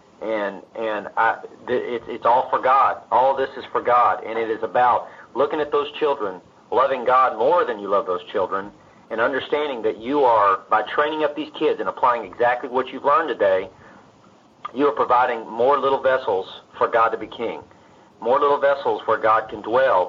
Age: 40-59